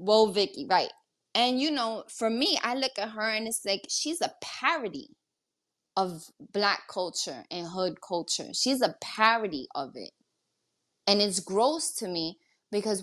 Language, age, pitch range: English, 20-39, 180-230 Hz